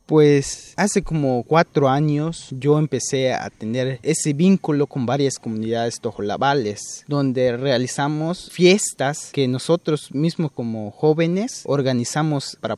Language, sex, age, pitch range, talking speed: Spanish, male, 30-49, 120-145 Hz, 115 wpm